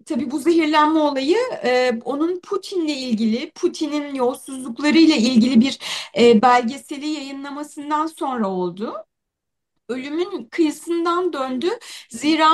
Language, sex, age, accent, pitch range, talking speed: Turkish, female, 30-49, native, 265-355 Hz, 100 wpm